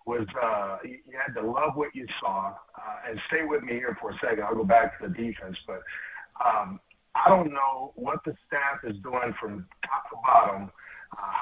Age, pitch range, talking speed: 50-69, 130-165 Hz, 205 wpm